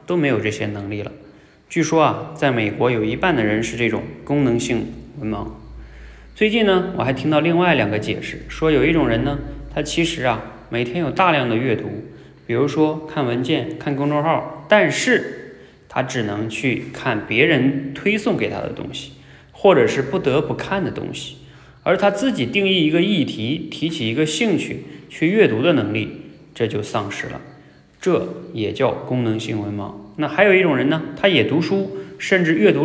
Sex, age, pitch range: male, 20-39, 110-155 Hz